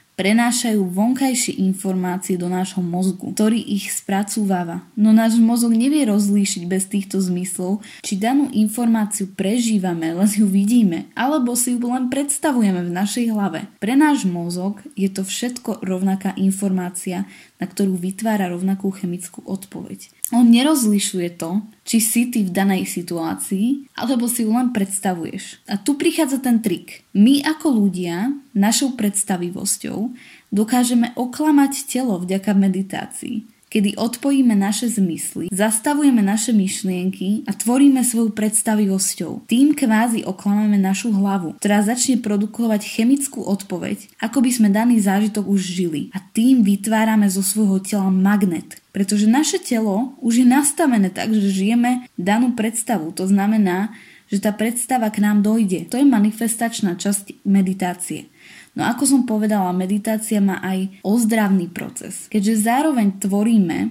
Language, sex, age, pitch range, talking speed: Slovak, female, 10-29, 195-235 Hz, 135 wpm